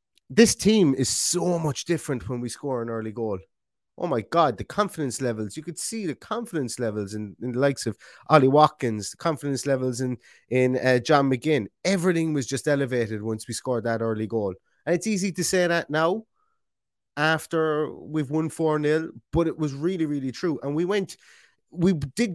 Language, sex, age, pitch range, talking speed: English, male, 30-49, 120-155 Hz, 195 wpm